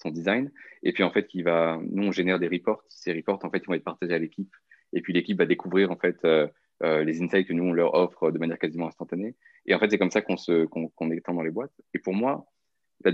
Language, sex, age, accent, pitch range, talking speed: French, male, 20-39, French, 85-100 Hz, 275 wpm